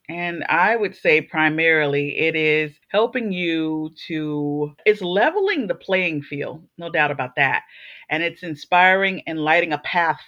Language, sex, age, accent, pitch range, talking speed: English, female, 40-59, American, 155-210 Hz, 150 wpm